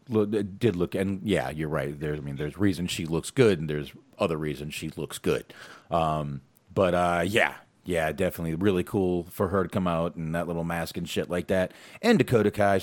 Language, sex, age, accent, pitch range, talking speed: English, male, 30-49, American, 85-115 Hz, 210 wpm